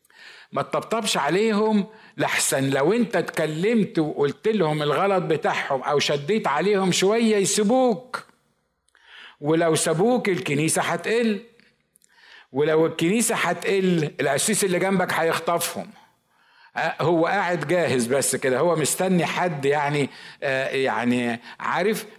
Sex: male